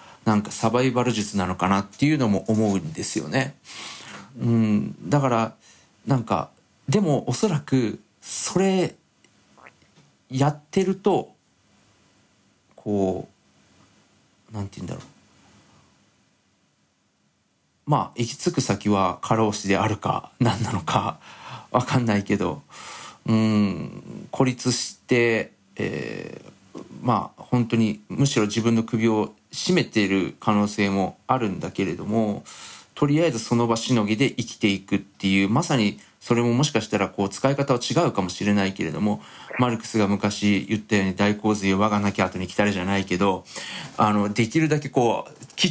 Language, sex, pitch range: Japanese, male, 100-125 Hz